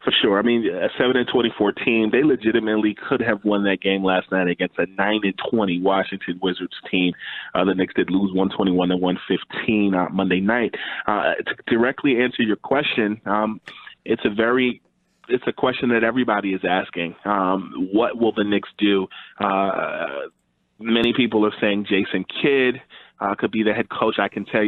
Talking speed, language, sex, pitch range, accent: 180 wpm, English, male, 95-110 Hz, American